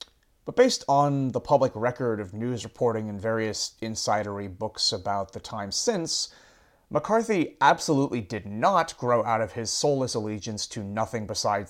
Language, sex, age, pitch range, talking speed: English, male, 30-49, 110-140 Hz, 155 wpm